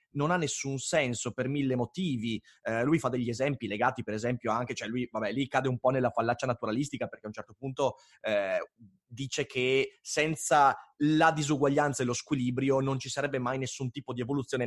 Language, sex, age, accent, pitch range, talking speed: Italian, male, 30-49, native, 120-145 Hz, 195 wpm